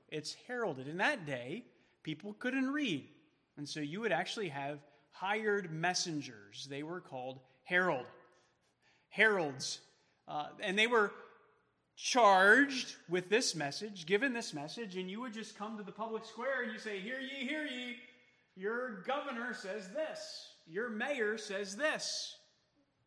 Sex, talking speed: male, 145 wpm